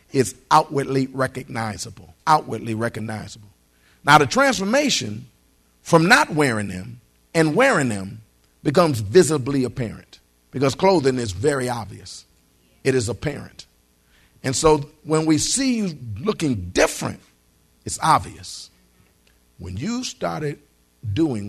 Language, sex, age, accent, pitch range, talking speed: English, male, 50-69, American, 95-135 Hz, 110 wpm